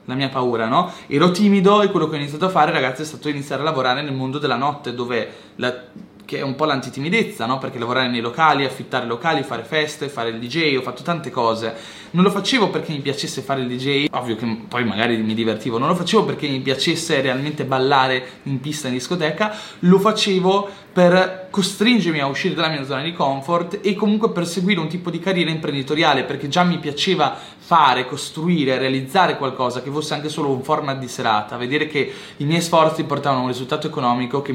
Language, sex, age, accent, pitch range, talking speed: Italian, male, 20-39, native, 125-165 Hz, 205 wpm